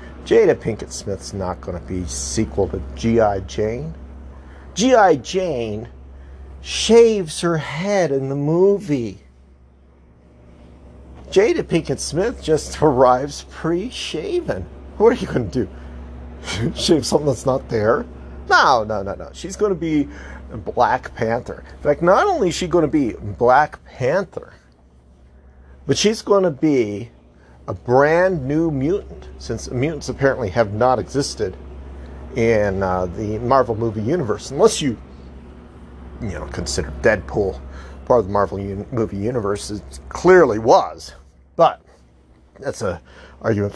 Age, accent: 40-59, American